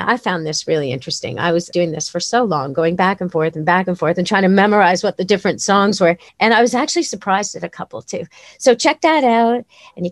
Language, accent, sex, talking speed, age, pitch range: English, American, female, 260 wpm, 40-59, 185-250 Hz